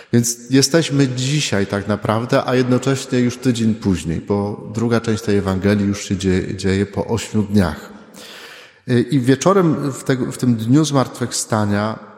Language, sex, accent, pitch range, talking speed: Polish, male, native, 110-130 Hz, 145 wpm